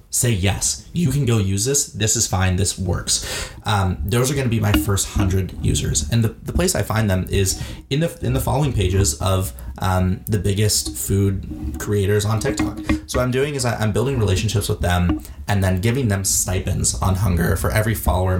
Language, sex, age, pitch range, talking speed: English, male, 20-39, 90-115 Hz, 205 wpm